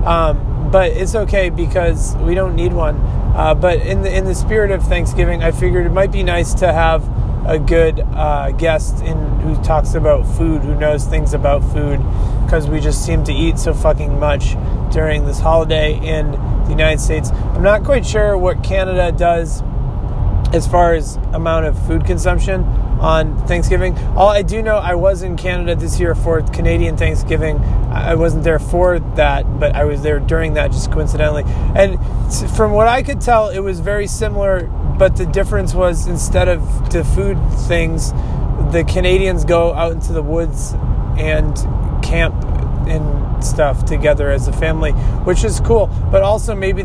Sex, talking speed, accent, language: male, 175 wpm, American, English